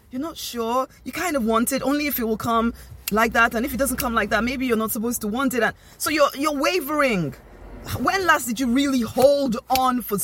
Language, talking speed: English, 245 wpm